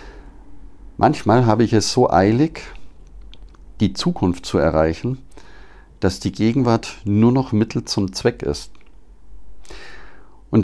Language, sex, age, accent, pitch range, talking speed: German, male, 50-69, German, 70-110 Hz, 115 wpm